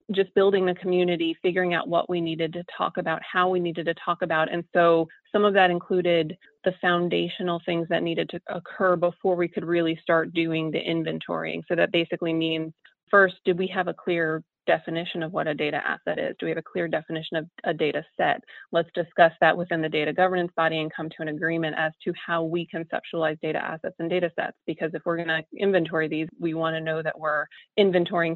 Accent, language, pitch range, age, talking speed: American, English, 160-175 Hz, 30-49, 220 wpm